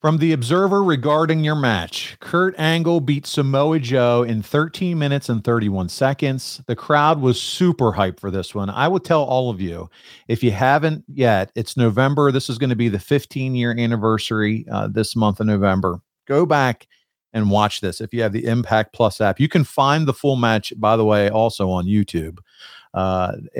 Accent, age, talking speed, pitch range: American, 40-59, 190 wpm, 105-145 Hz